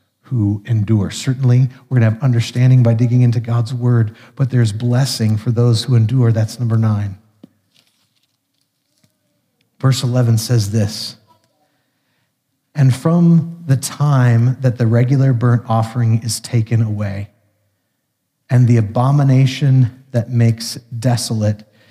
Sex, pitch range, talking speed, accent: male, 120-160 Hz, 125 wpm, American